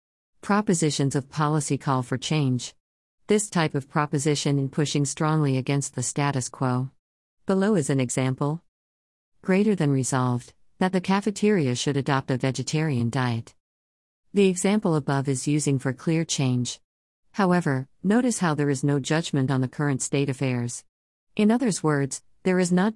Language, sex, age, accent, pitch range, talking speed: English, female, 50-69, American, 130-160 Hz, 150 wpm